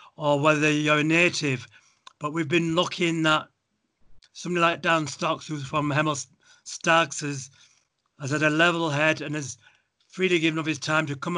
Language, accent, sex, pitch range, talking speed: English, British, male, 145-165 Hz, 175 wpm